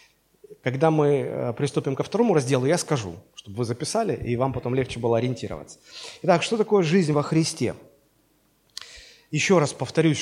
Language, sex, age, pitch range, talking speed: Russian, male, 30-49, 130-175 Hz, 155 wpm